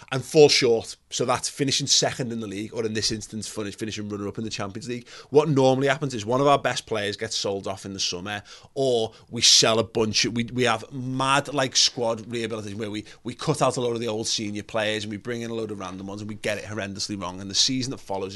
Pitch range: 105-130 Hz